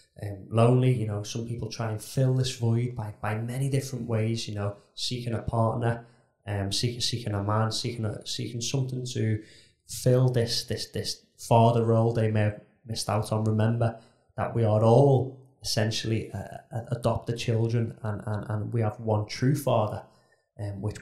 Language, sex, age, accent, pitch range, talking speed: English, male, 20-39, British, 105-125 Hz, 175 wpm